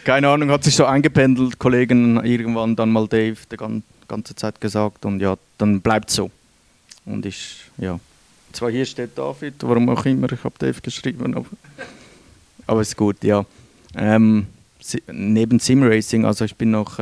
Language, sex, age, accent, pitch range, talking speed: English, male, 30-49, Swiss, 95-110 Hz, 165 wpm